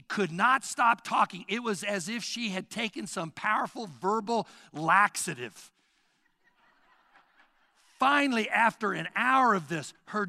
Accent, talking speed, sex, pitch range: American, 130 wpm, male, 160-230 Hz